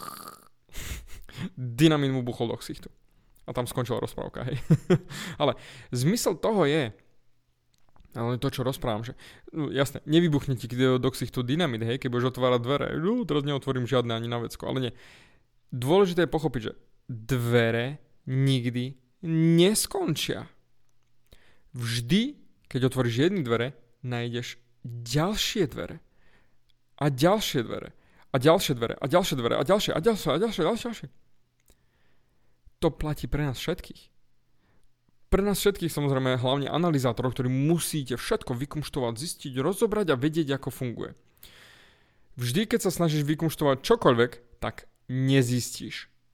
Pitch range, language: 125-165 Hz, Slovak